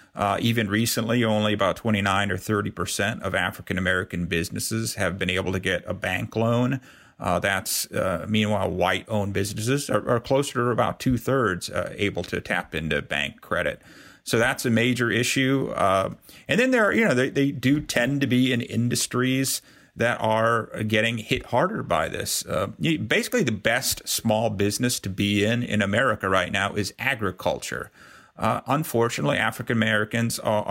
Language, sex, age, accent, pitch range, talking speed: English, male, 40-59, American, 100-120 Hz, 170 wpm